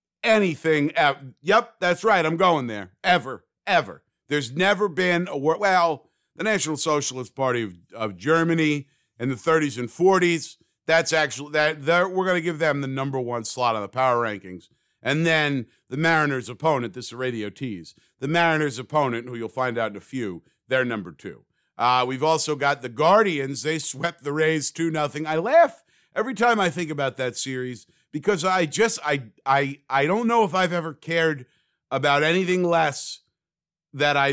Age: 50-69